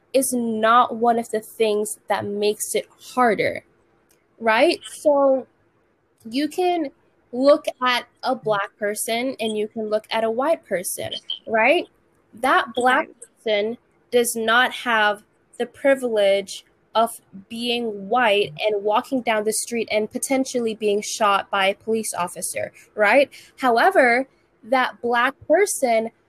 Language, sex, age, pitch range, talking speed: English, female, 10-29, 210-250 Hz, 130 wpm